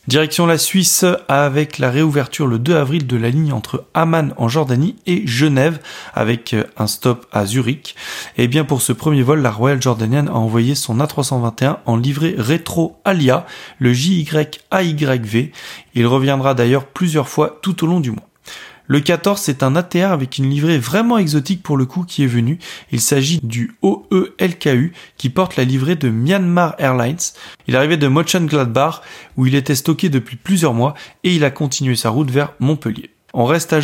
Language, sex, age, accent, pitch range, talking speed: French, male, 20-39, French, 125-165 Hz, 185 wpm